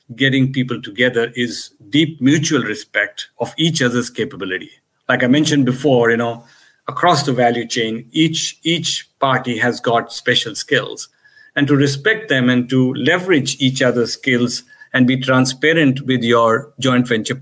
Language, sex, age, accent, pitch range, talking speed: English, male, 50-69, Indian, 120-150 Hz, 155 wpm